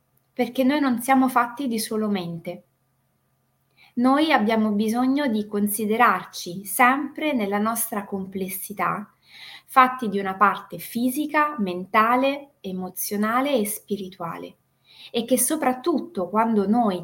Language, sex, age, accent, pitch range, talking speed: Italian, female, 20-39, native, 175-235 Hz, 110 wpm